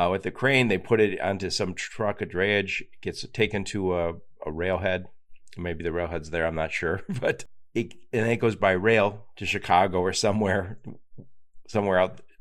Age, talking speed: 50-69, 190 wpm